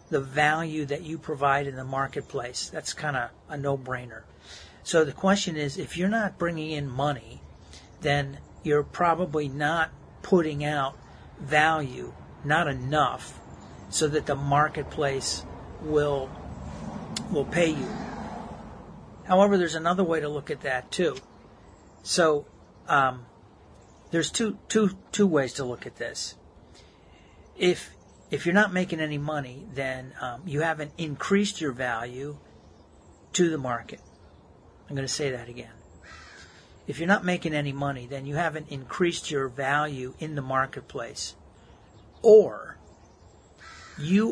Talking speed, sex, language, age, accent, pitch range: 135 wpm, male, English, 50-69, American, 125-160 Hz